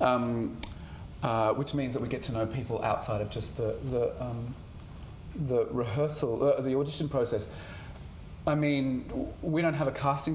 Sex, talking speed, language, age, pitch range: male, 170 wpm, English, 30-49, 115-140 Hz